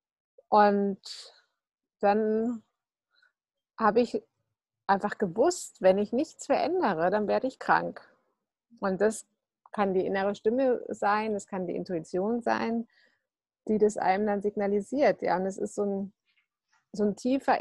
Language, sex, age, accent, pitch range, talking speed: German, female, 50-69, German, 190-230 Hz, 130 wpm